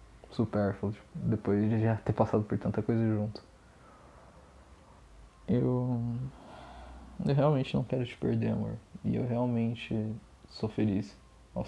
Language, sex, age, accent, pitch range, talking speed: Portuguese, male, 20-39, Brazilian, 105-125 Hz, 125 wpm